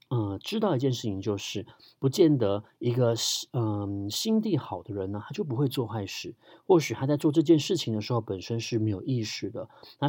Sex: male